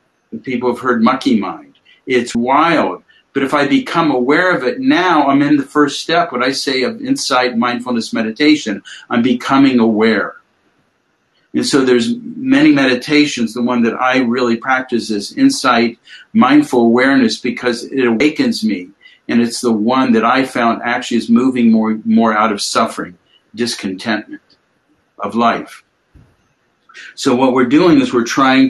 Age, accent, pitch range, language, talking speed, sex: 50-69, American, 115-150 Hz, English, 155 wpm, male